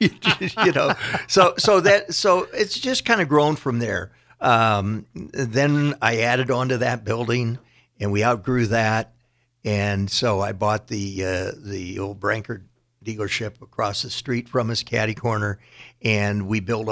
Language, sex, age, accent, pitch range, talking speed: English, male, 60-79, American, 100-120 Hz, 155 wpm